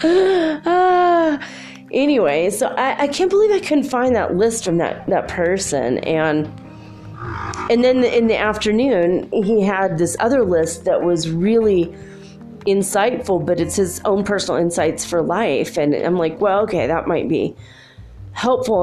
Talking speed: 155 wpm